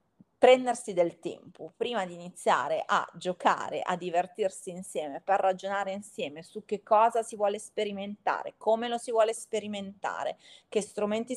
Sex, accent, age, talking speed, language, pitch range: female, native, 30-49, 140 wpm, Italian, 180-240 Hz